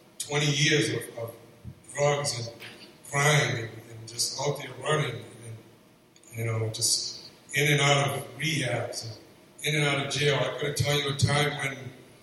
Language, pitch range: English, 120-145 Hz